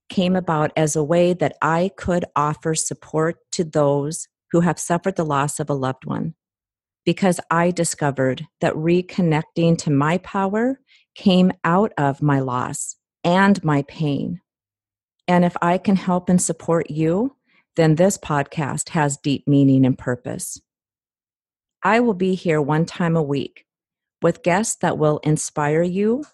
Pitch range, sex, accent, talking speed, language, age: 145-180 Hz, female, American, 155 wpm, English, 40-59